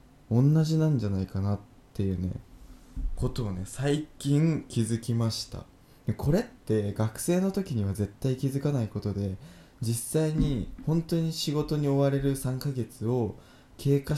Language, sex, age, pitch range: Japanese, male, 20-39, 105-140 Hz